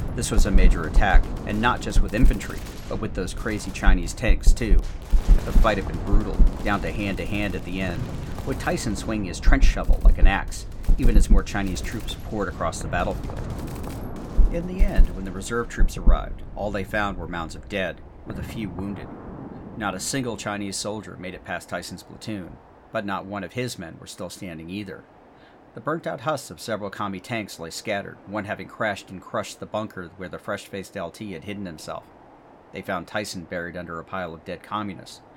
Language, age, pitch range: English, 40-59, 90-105 Hz